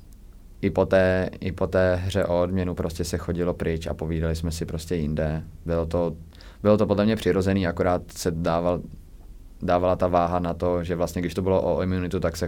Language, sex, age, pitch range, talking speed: Czech, male, 20-39, 90-105 Hz, 205 wpm